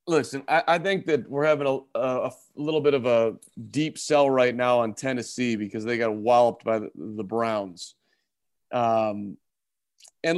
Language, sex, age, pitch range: English, male, 40-59, 115-140 Hz